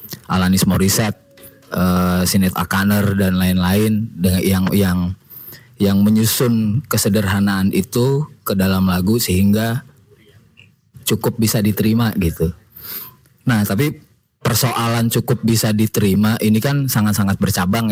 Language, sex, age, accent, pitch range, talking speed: Indonesian, male, 20-39, native, 95-115 Hz, 105 wpm